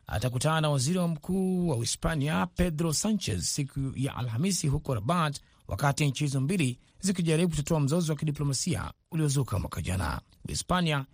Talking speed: 140 wpm